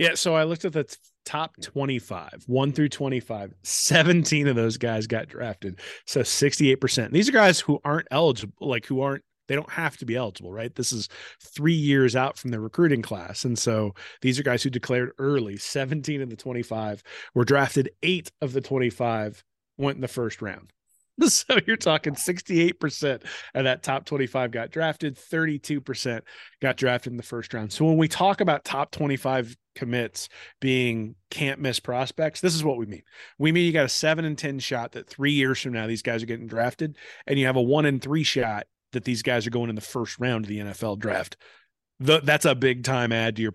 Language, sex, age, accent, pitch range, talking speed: English, male, 30-49, American, 120-150 Hz, 205 wpm